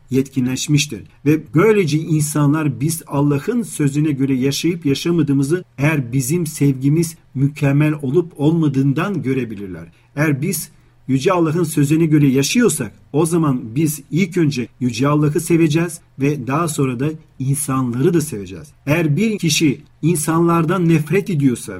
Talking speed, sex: 125 wpm, male